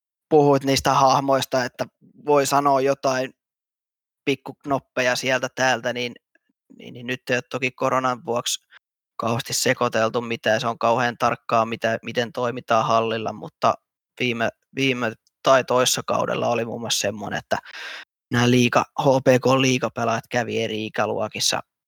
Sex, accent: male, native